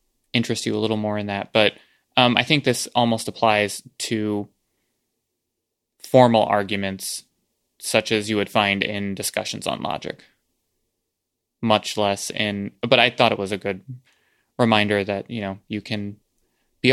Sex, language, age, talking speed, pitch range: male, English, 20-39, 150 wpm, 100-120 Hz